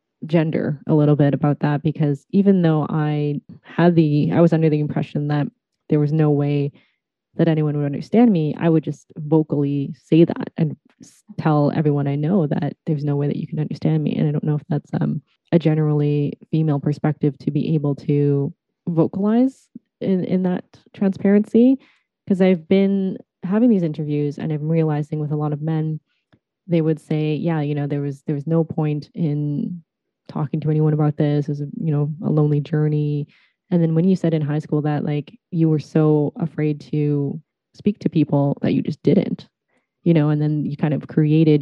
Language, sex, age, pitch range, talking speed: English, female, 20-39, 145-165 Hz, 195 wpm